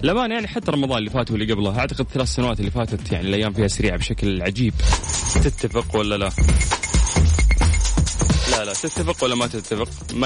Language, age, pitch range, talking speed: Arabic, 20-39, 100-125 Hz, 170 wpm